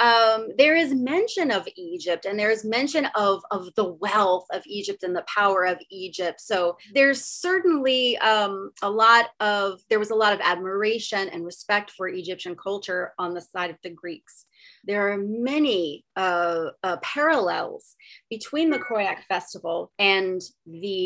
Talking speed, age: 160 wpm, 30-49